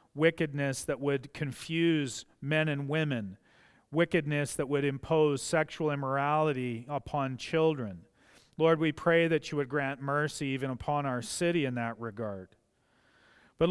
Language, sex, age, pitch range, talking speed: English, male, 40-59, 145-175 Hz, 135 wpm